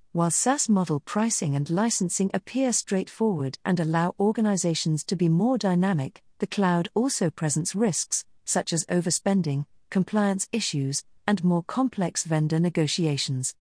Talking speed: 130 wpm